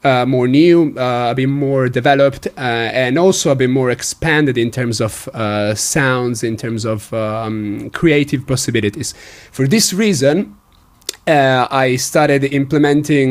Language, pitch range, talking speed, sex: English, 115-145 Hz, 150 wpm, male